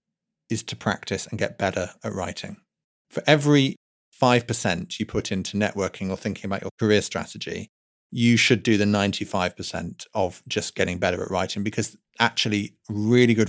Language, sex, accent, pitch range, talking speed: English, male, British, 100-115 Hz, 160 wpm